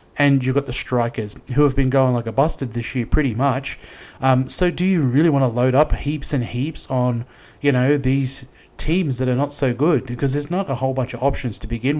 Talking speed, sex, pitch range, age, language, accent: 240 wpm, male, 120-140 Hz, 30-49, English, Australian